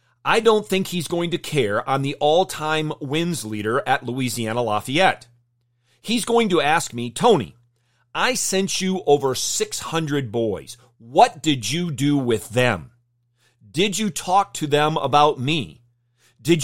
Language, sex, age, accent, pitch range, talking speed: English, male, 40-59, American, 120-155 Hz, 150 wpm